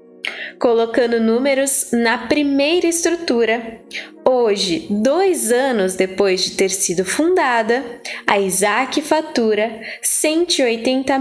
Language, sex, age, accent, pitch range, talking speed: Portuguese, female, 10-29, Brazilian, 215-300 Hz, 90 wpm